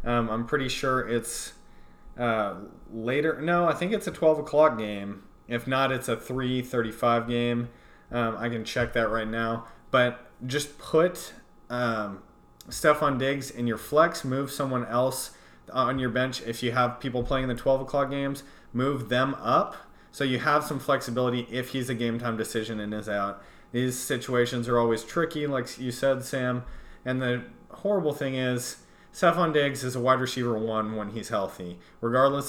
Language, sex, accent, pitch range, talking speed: English, male, American, 115-130 Hz, 170 wpm